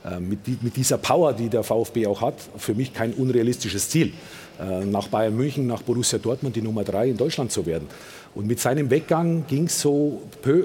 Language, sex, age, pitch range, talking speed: German, male, 50-69, 115-150 Hz, 190 wpm